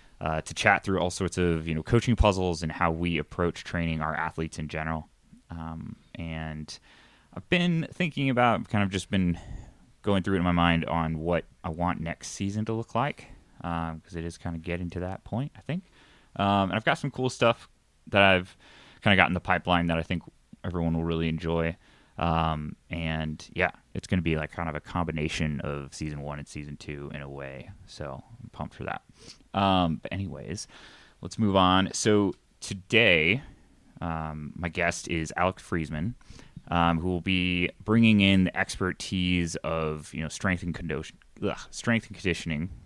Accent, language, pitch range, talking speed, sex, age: American, English, 80-95 Hz, 190 wpm, male, 20-39